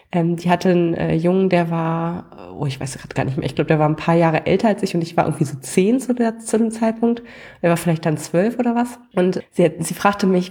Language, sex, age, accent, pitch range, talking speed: German, female, 20-39, German, 165-195 Hz, 270 wpm